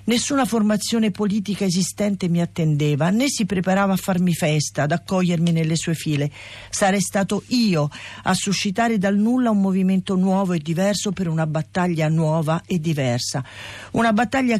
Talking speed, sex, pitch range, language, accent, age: 150 wpm, female, 150-210 Hz, Italian, native, 50-69